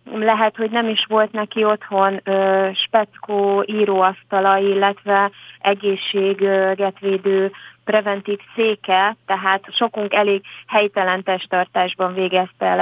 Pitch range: 190-215 Hz